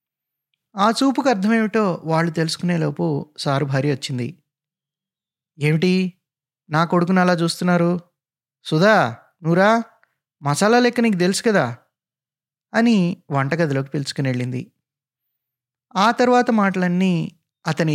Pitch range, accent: 140-180 Hz, native